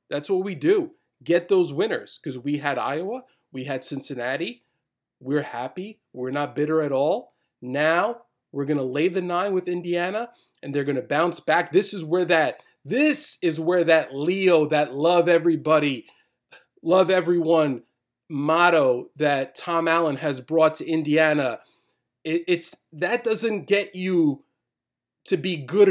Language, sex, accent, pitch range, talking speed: English, male, American, 150-200 Hz, 155 wpm